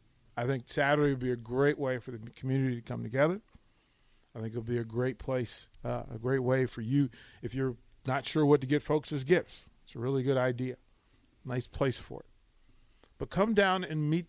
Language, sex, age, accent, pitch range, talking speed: English, male, 40-59, American, 125-155 Hz, 215 wpm